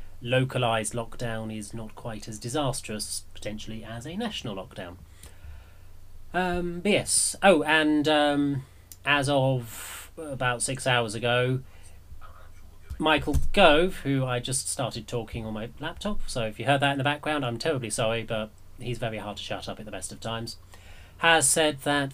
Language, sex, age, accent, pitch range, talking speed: English, male, 30-49, British, 95-130 Hz, 160 wpm